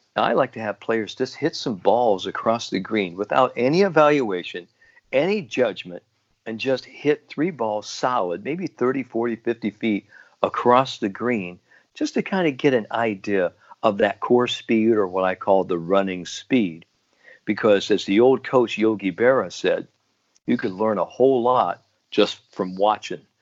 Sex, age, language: male, 50-69, English